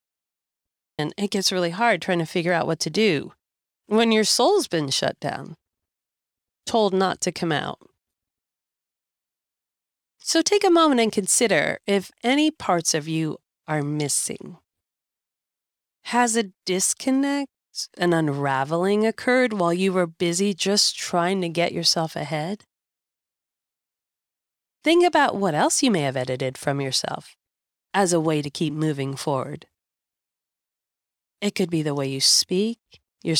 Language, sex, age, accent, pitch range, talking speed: English, female, 30-49, American, 155-225 Hz, 140 wpm